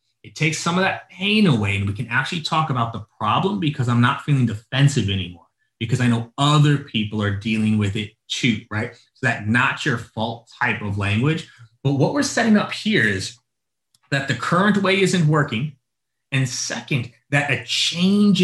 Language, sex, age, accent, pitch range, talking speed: English, male, 30-49, American, 120-165 Hz, 190 wpm